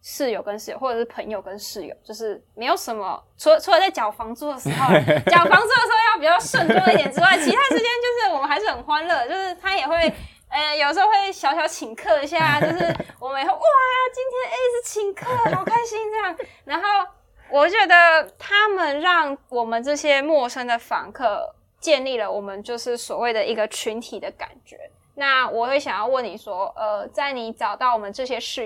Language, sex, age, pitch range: Chinese, female, 20-39, 230-330 Hz